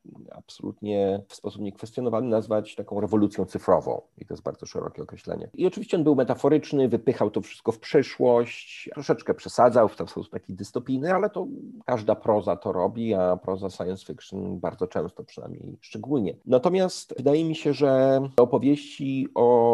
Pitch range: 90-120 Hz